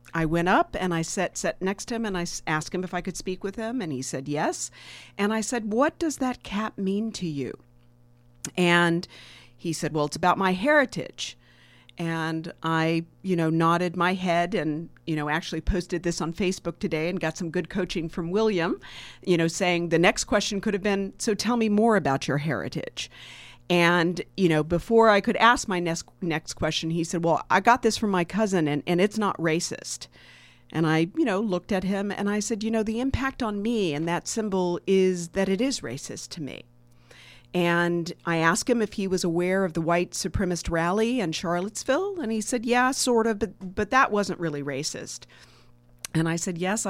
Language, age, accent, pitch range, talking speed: English, 50-69, American, 160-205 Hz, 210 wpm